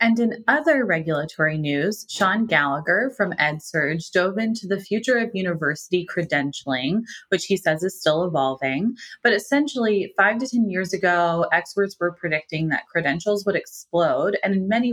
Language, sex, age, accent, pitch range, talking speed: English, female, 20-39, American, 155-195 Hz, 155 wpm